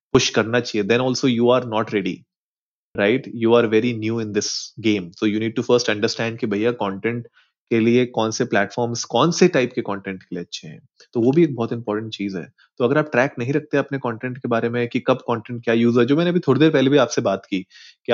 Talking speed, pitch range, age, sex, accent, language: 250 wpm, 115-140 Hz, 30-49, male, native, Hindi